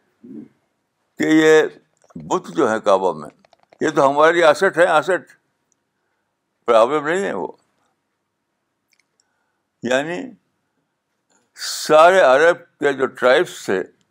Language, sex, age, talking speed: Urdu, male, 60-79, 100 wpm